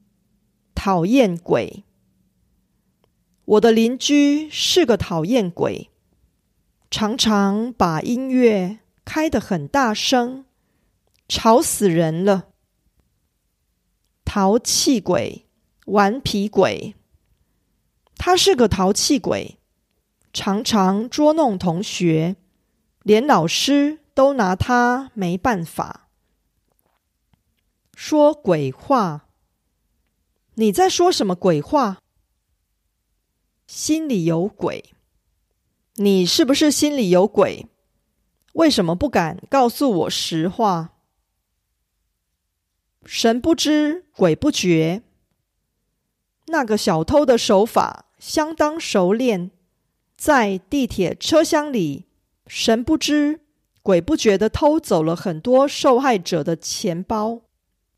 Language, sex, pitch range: Korean, female, 180-280 Hz